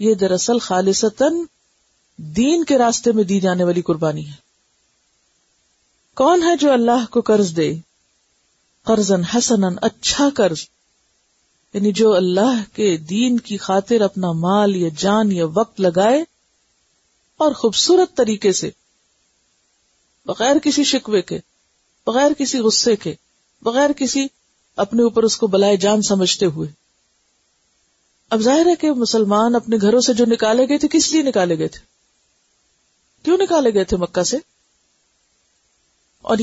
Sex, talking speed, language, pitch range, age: female, 135 wpm, Urdu, 195-275 Hz, 50-69